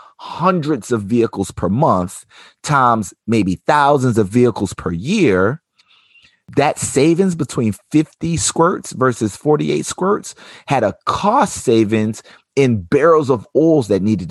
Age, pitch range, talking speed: 30-49, 90-120 Hz, 125 wpm